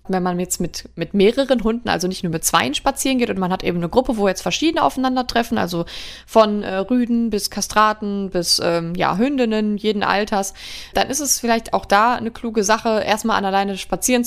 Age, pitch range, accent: 20-39, 190-235 Hz, German